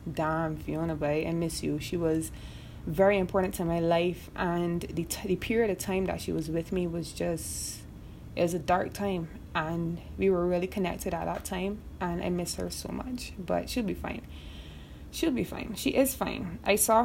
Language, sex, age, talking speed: English, female, 20-39, 200 wpm